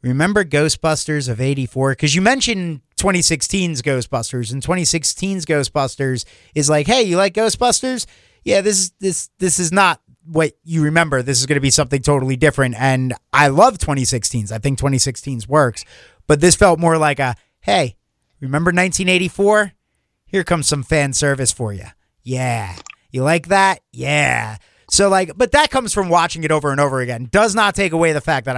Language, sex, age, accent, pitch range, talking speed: English, male, 30-49, American, 135-180 Hz, 175 wpm